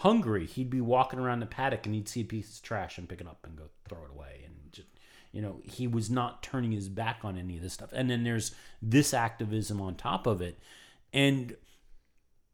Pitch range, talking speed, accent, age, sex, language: 95-120 Hz, 230 wpm, American, 40-59, male, English